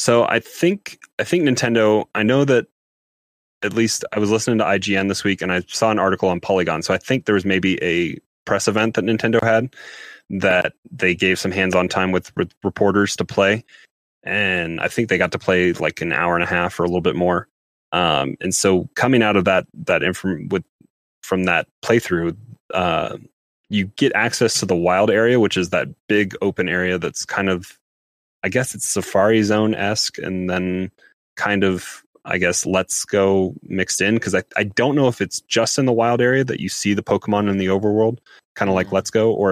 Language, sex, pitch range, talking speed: English, male, 90-105 Hz, 210 wpm